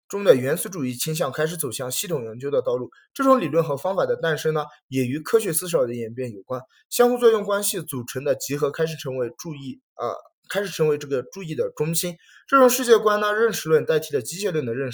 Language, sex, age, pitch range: Chinese, male, 20-39, 140-230 Hz